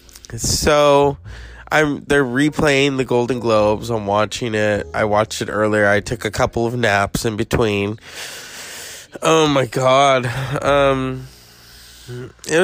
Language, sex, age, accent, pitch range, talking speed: English, male, 20-39, American, 110-160 Hz, 130 wpm